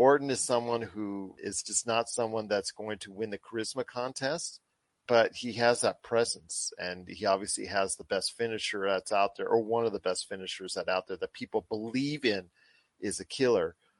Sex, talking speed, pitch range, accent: male, 195 wpm, 100-120 Hz, American